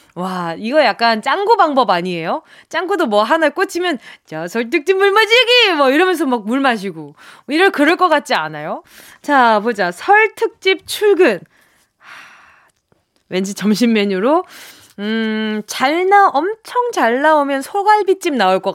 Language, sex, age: Korean, female, 20-39